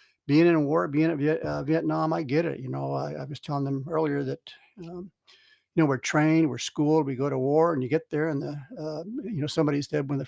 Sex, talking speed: male, 245 wpm